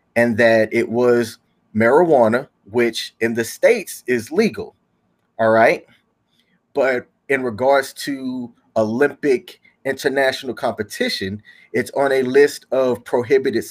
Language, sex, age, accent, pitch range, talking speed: English, male, 30-49, American, 115-160 Hz, 115 wpm